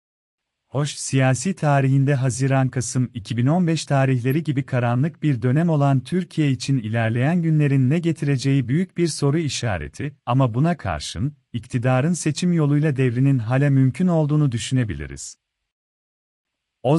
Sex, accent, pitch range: male, native, 125-150 Hz